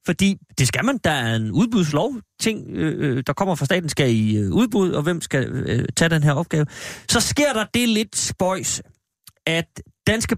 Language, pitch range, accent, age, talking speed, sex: Danish, 130-185 Hz, native, 30-49, 190 wpm, male